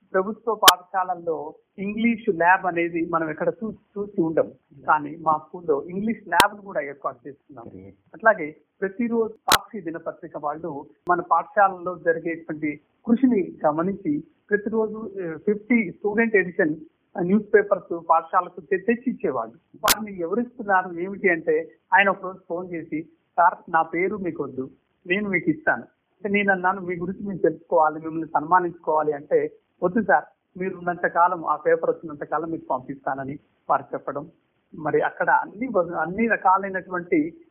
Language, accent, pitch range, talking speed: Telugu, native, 160-200 Hz, 125 wpm